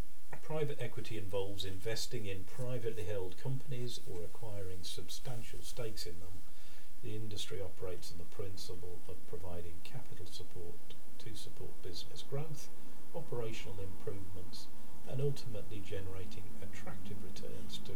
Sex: male